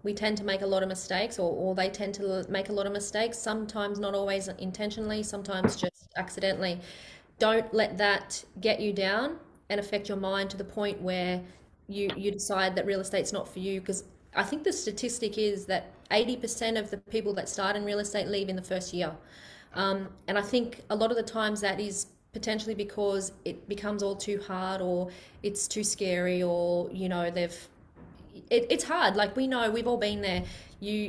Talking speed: 205 wpm